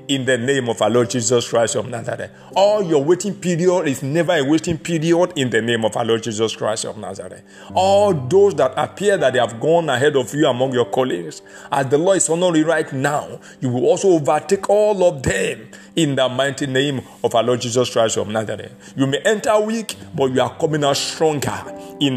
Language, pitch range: English, 120-170 Hz